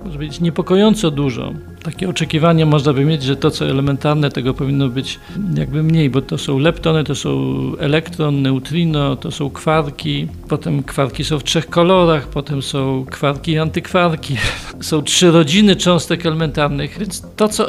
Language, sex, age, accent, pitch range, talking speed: Polish, male, 50-69, native, 145-185 Hz, 165 wpm